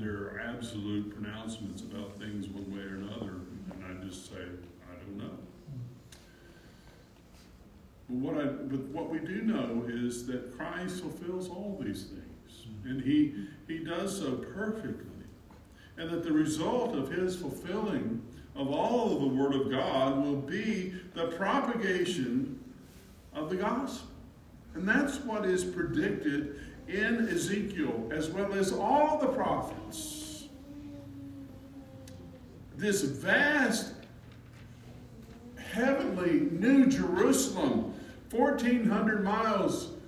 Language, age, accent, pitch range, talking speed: English, 50-69, American, 115-195 Hz, 120 wpm